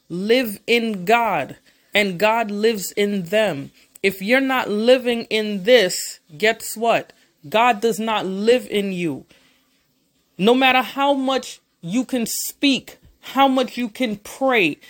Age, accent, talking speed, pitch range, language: 30-49, American, 135 wpm, 210-255 Hz, English